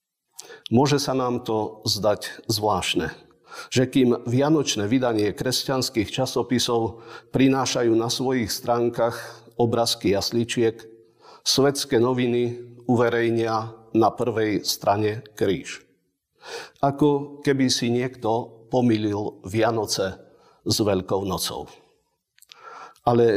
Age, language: 50-69, Slovak